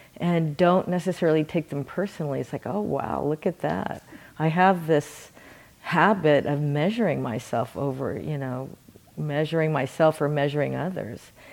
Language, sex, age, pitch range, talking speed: English, female, 50-69, 145-175 Hz, 145 wpm